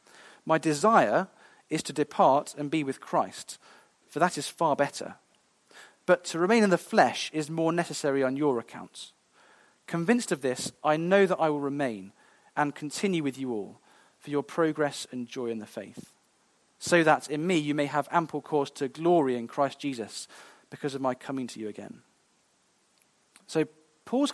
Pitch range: 145-185 Hz